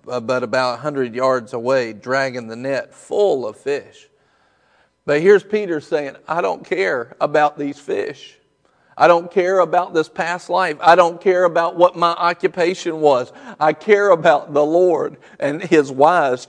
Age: 40-59